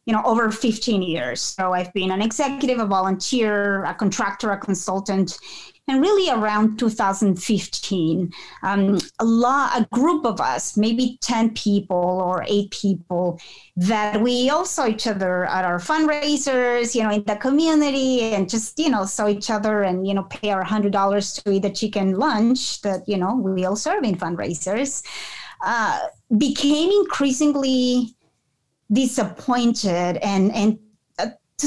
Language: English